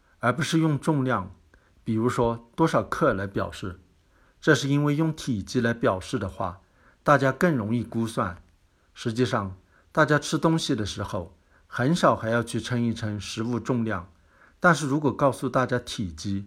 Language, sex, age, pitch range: Chinese, male, 60-79, 95-135 Hz